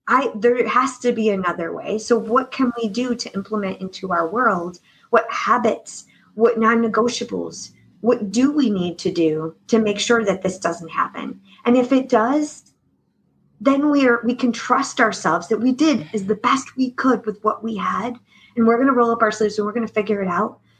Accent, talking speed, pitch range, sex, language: American, 200 wpm, 210-250 Hz, female, English